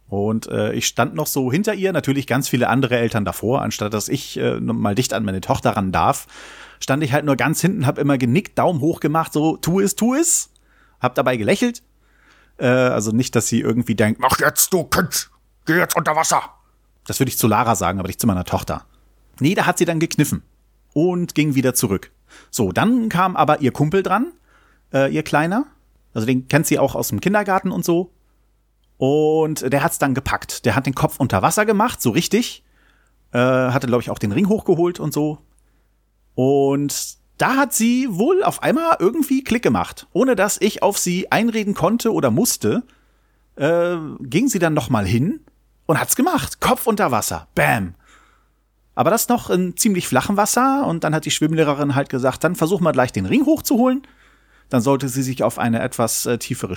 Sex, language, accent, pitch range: male, German, German, 125-190 Hz